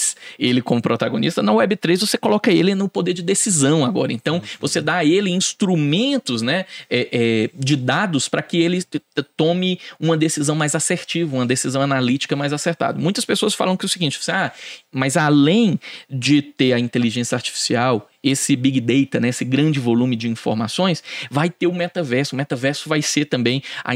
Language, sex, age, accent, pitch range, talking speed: Portuguese, male, 20-39, Brazilian, 130-175 Hz, 170 wpm